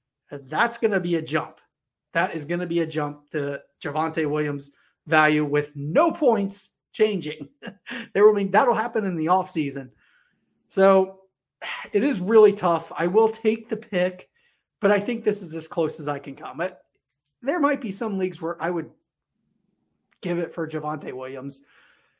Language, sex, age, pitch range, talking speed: English, male, 30-49, 150-195 Hz, 175 wpm